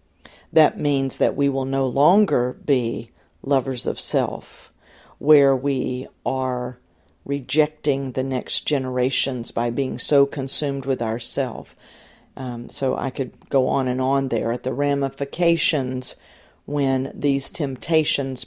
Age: 50-69